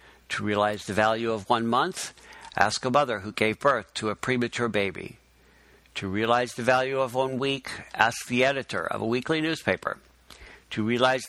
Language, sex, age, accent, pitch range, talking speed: English, male, 60-79, American, 110-135 Hz, 175 wpm